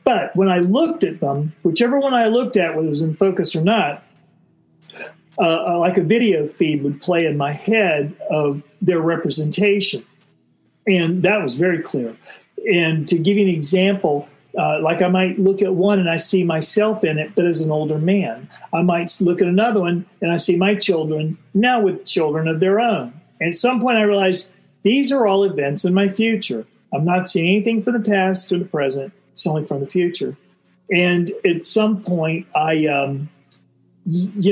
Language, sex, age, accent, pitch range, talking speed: English, male, 50-69, American, 155-195 Hz, 195 wpm